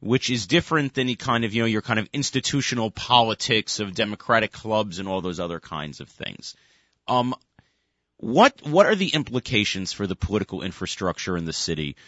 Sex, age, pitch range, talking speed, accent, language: male, 30-49, 105-130 Hz, 185 wpm, American, English